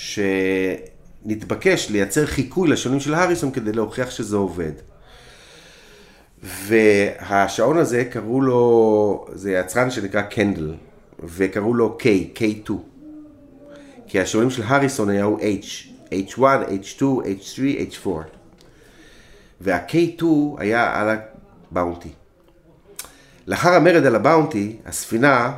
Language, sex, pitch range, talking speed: Hebrew, male, 100-150 Hz, 95 wpm